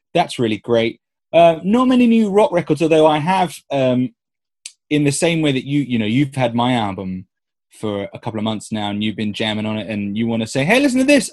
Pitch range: 115-155 Hz